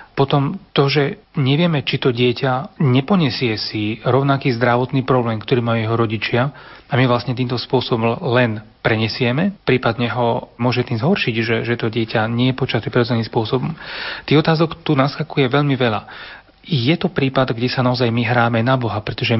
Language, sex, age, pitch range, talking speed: Slovak, male, 30-49, 115-140 Hz, 165 wpm